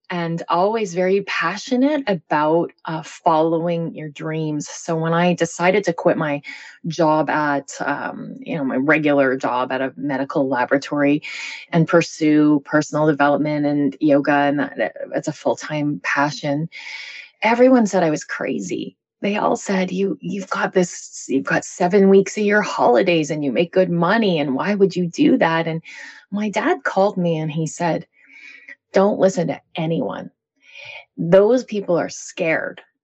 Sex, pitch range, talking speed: female, 155-195 Hz, 160 wpm